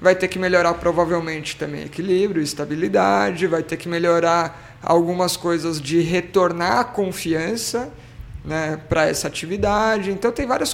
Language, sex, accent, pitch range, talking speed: Portuguese, male, Brazilian, 165-200 Hz, 140 wpm